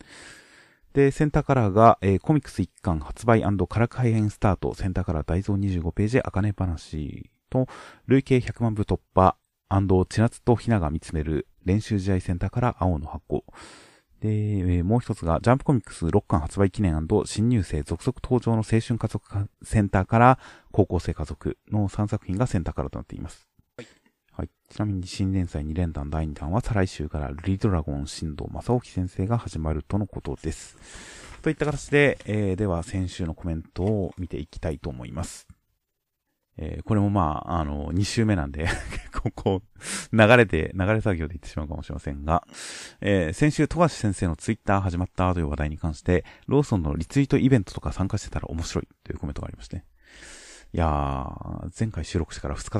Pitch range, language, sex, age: 80-110 Hz, Japanese, male, 30-49